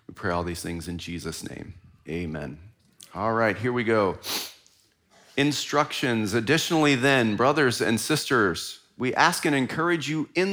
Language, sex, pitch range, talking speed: English, male, 100-135 Hz, 150 wpm